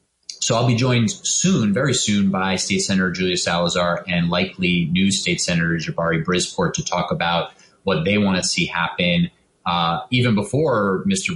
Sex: male